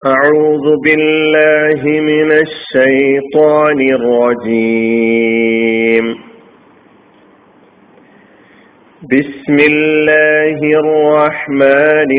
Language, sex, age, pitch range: Malayalam, male, 40-59, 135-155 Hz